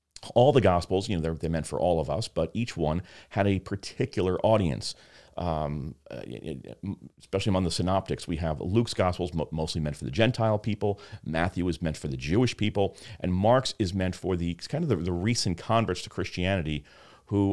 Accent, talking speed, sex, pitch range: American, 190 wpm, male, 85-115 Hz